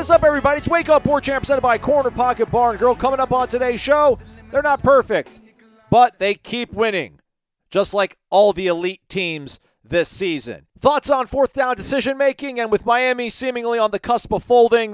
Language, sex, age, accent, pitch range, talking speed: English, male, 40-59, American, 150-225 Hz, 195 wpm